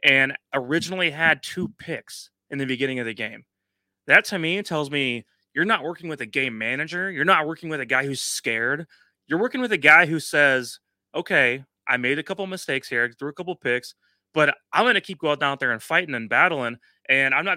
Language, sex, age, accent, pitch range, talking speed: English, male, 30-49, American, 130-160 Hz, 220 wpm